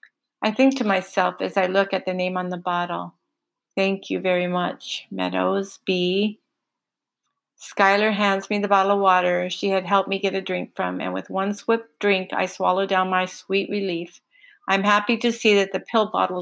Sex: female